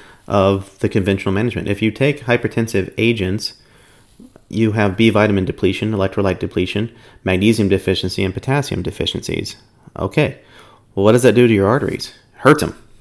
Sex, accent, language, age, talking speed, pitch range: male, American, English, 30-49, 150 wpm, 95-110 Hz